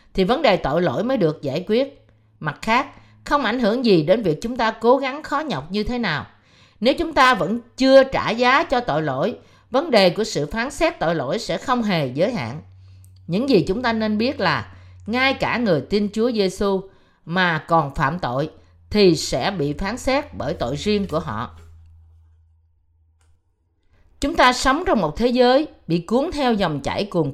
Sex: female